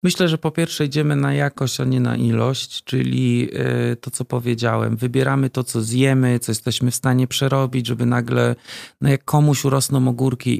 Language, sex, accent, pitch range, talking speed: Polish, male, native, 115-130 Hz, 175 wpm